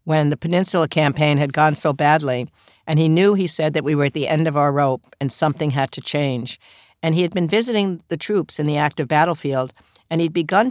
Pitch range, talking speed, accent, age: 145-165 Hz, 230 wpm, American, 60-79